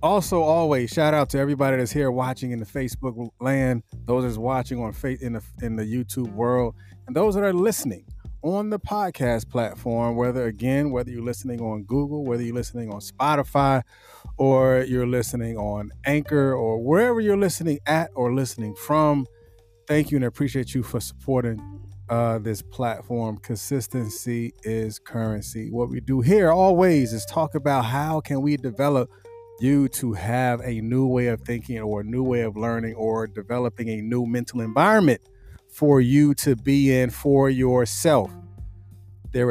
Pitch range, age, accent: 115-145 Hz, 30-49, American